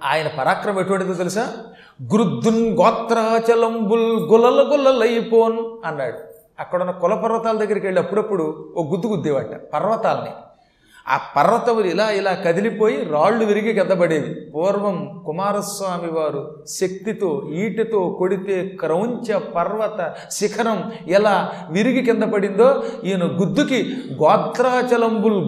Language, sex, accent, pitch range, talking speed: Telugu, male, native, 165-220 Hz, 95 wpm